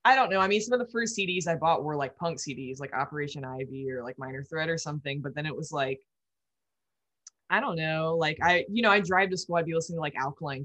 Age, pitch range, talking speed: 20-39, 140-185 Hz, 265 wpm